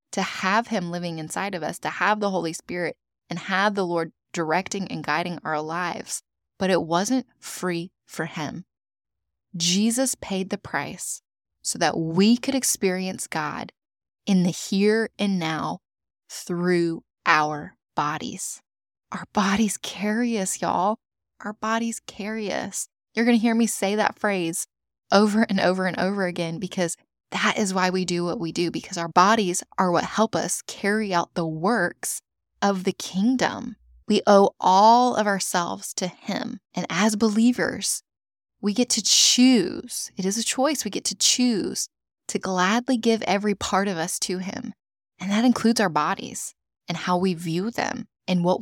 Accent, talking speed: American, 165 wpm